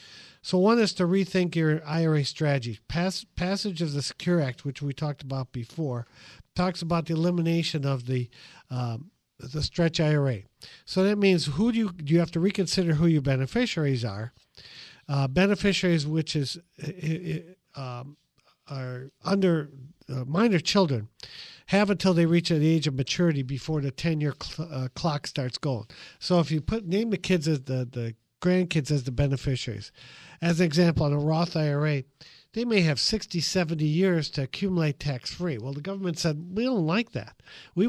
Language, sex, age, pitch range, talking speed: English, male, 50-69, 135-180 Hz, 170 wpm